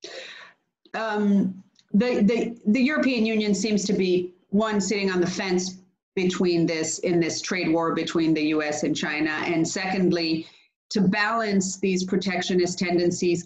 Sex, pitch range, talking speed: female, 175-210 Hz, 145 wpm